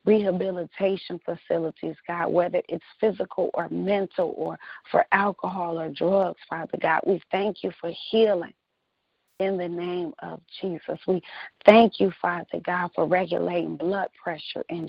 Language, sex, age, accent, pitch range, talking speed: English, female, 30-49, American, 170-195 Hz, 140 wpm